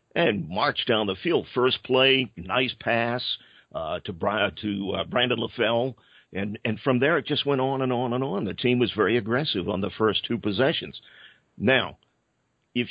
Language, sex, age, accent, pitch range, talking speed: English, male, 50-69, American, 105-130 Hz, 180 wpm